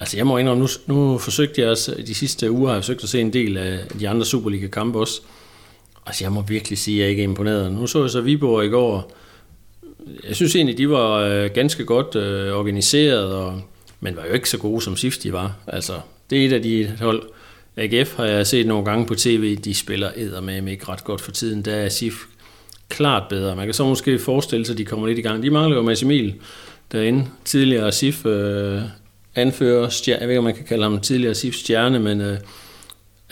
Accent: native